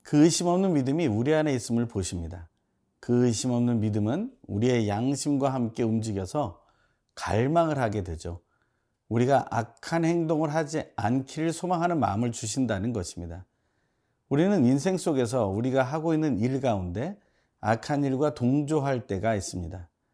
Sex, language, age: male, Korean, 40-59